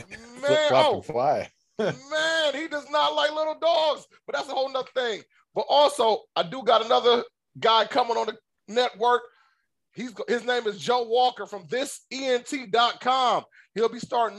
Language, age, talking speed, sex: English, 20-39, 160 wpm, male